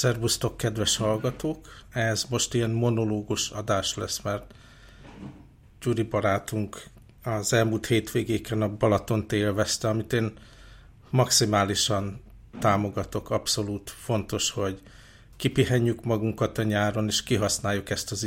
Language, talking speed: Hungarian, 110 wpm